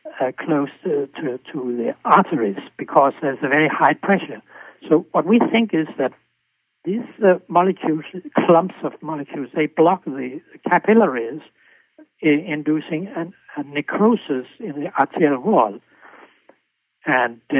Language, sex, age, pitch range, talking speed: English, male, 60-79, 145-195 Hz, 130 wpm